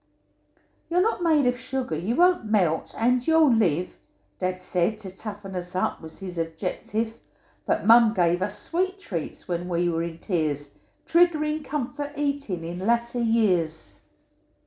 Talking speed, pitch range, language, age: 150 wpm, 185-295 Hz, English, 60-79